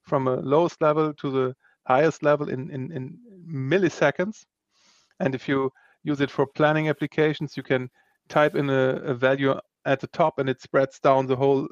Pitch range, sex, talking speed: 125-155 Hz, male, 185 wpm